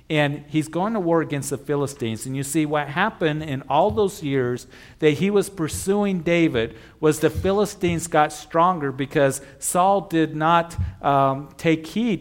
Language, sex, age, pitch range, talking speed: English, male, 50-69, 140-170 Hz, 165 wpm